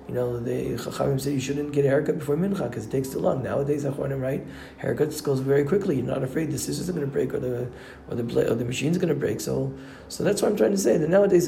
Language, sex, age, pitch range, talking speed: English, male, 40-59, 125-155 Hz, 275 wpm